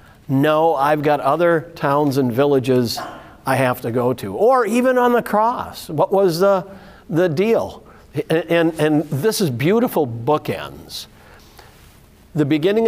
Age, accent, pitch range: 60-79, American, 135-180 Hz